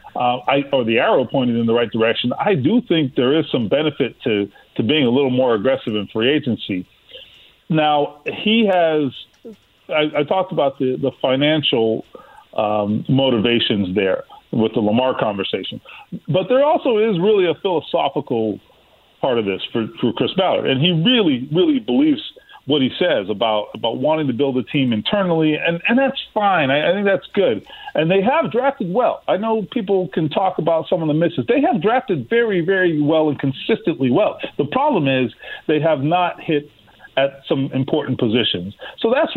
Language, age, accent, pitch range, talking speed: English, 40-59, American, 130-200 Hz, 180 wpm